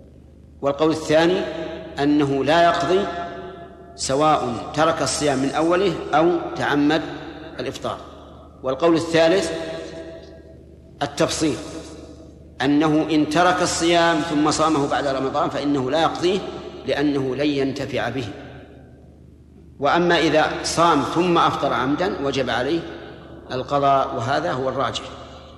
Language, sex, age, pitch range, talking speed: Arabic, male, 50-69, 105-155 Hz, 100 wpm